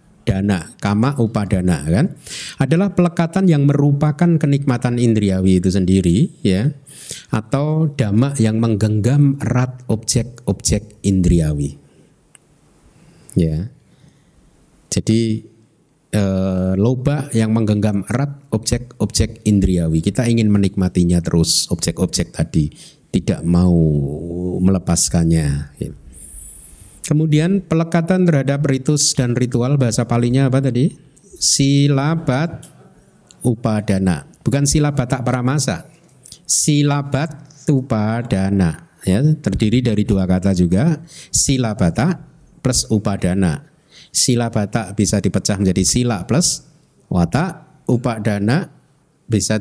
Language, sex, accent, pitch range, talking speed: Indonesian, male, native, 95-145 Hz, 95 wpm